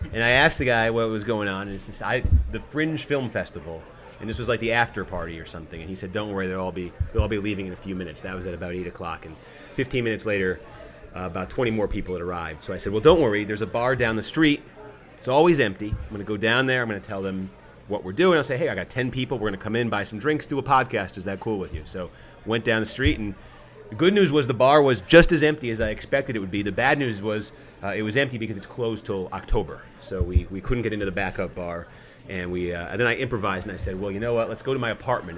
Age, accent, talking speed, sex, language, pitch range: 30-49, American, 295 wpm, male, English, 100-140 Hz